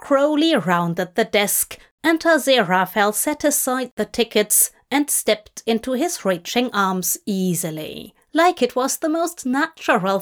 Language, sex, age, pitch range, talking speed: English, female, 30-49, 205-275 Hz, 135 wpm